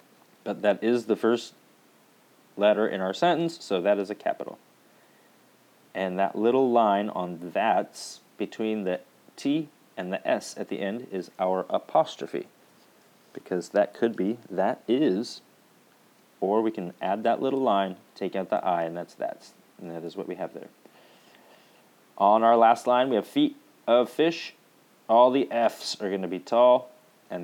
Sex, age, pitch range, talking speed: male, 30-49, 100-135 Hz, 170 wpm